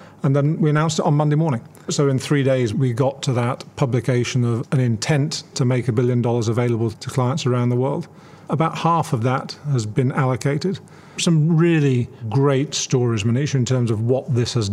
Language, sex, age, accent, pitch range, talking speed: English, male, 40-59, British, 125-145 Hz, 200 wpm